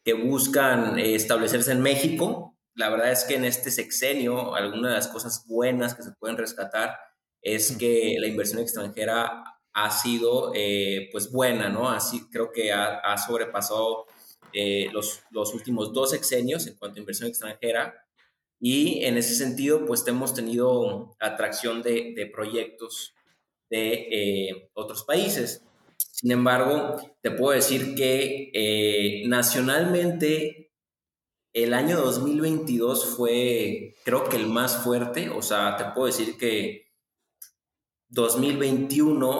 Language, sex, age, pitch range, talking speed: Spanish, male, 20-39, 110-135 Hz, 135 wpm